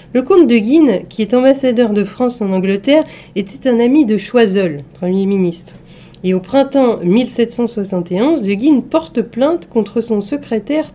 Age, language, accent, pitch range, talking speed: 40-59, French, French, 195-255 Hz, 160 wpm